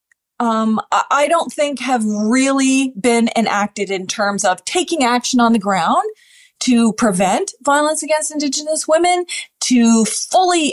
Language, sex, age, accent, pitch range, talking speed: English, female, 30-49, American, 210-275 Hz, 135 wpm